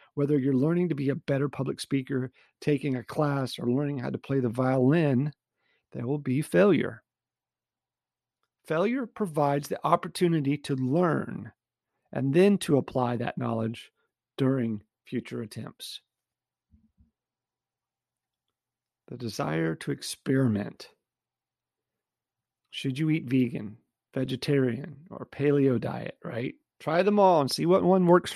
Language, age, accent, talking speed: English, 40-59, American, 125 wpm